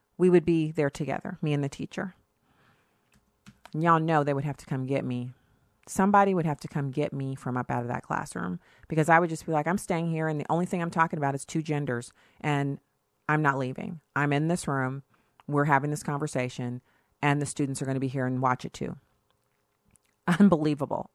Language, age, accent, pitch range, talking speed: English, 40-59, American, 145-195 Hz, 215 wpm